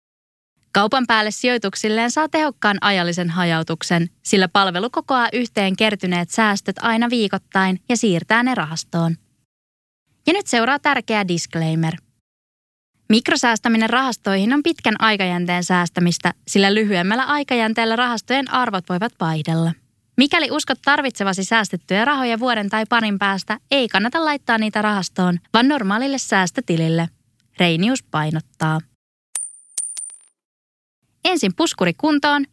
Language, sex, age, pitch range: Finnish, female, 20-39, 175-250 Hz